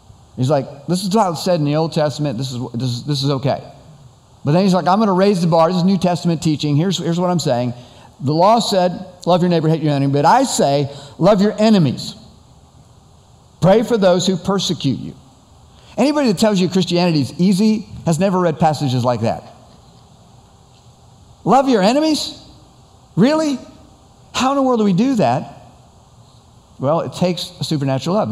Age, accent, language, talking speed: 50-69, American, English, 185 wpm